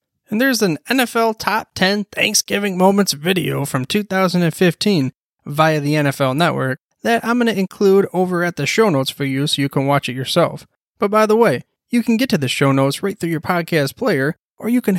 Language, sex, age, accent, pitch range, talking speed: English, male, 20-39, American, 145-200 Hz, 210 wpm